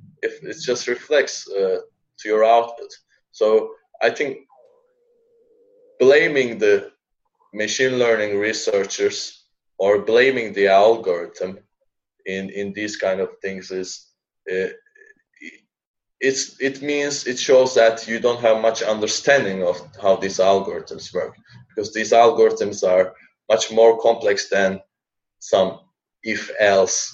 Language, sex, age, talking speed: English, male, 20-39, 115 wpm